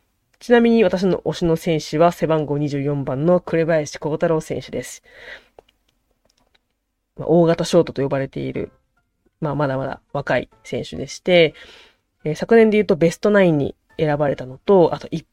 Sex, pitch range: female, 150-190 Hz